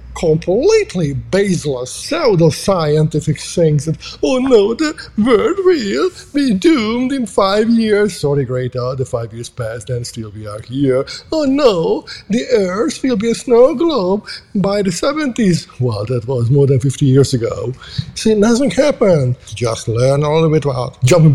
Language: English